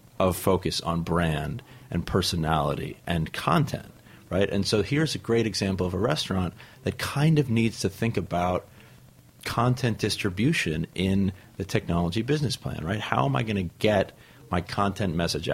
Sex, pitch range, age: male, 90-120 Hz, 40-59